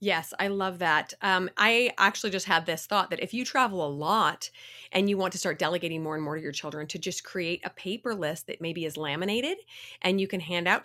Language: English